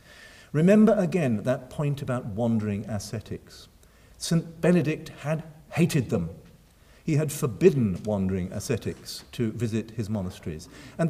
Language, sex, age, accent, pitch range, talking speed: English, male, 50-69, British, 110-165 Hz, 120 wpm